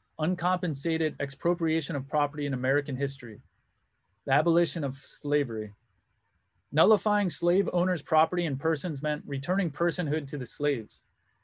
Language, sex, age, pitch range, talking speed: English, male, 30-49, 110-165 Hz, 120 wpm